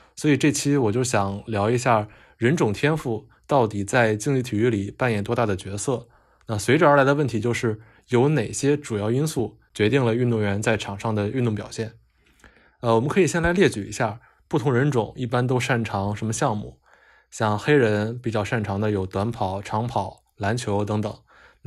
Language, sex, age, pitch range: Chinese, male, 20-39, 105-130 Hz